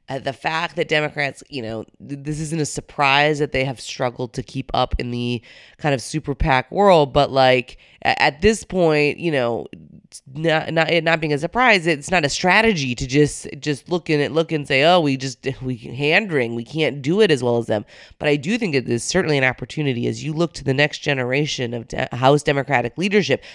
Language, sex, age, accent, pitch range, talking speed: English, female, 20-39, American, 135-170 Hz, 230 wpm